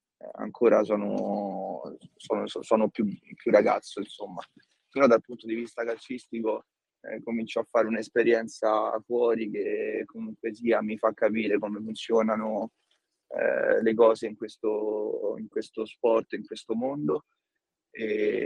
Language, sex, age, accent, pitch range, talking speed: Italian, male, 20-39, native, 110-135 Hz, 130 wpm